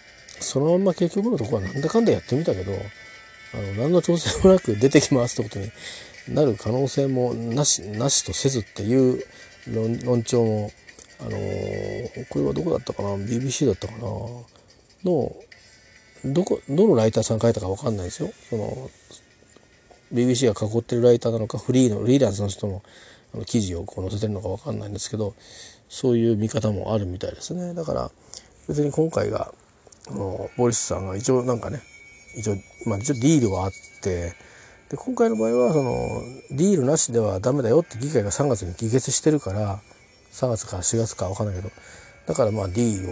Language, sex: Japanese, male